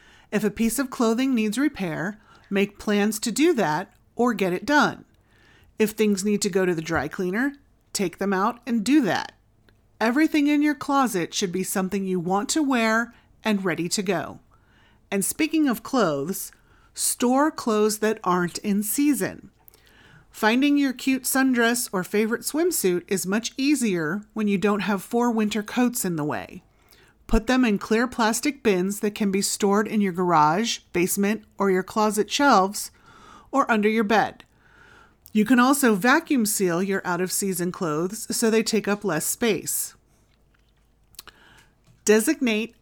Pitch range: 195-240 Hz